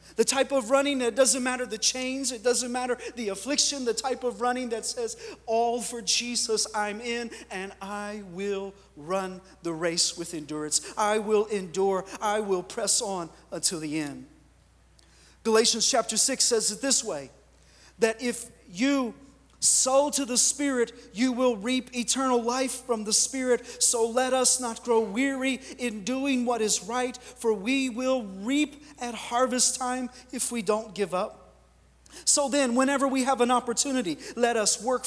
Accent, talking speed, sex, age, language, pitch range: American, 170 wpm, male, 40-59, English, 210-255 Hz